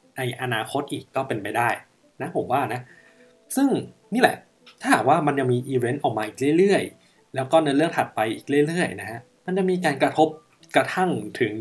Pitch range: 125-150 Hz